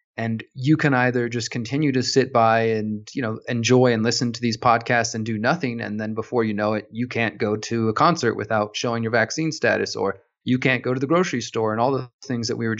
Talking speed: 250 wpm